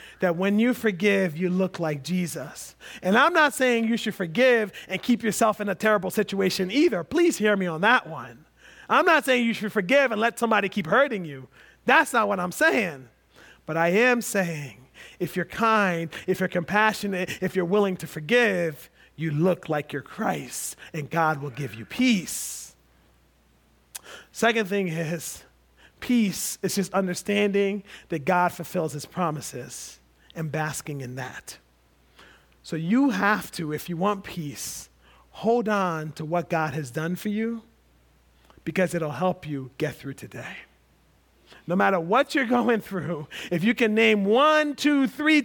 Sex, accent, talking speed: male, American, 165 wpm